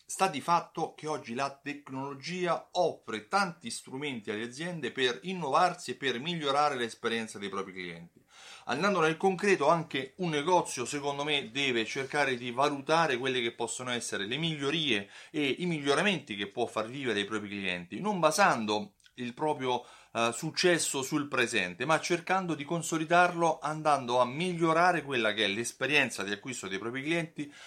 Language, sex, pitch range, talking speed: Italian, male, 115-160 Hz, 155 wpm